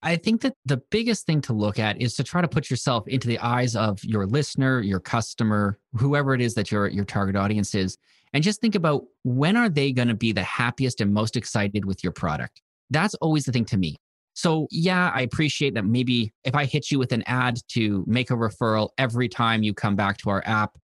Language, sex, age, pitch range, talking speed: English, male, 20-39, 110-140 Hz, 235 wpm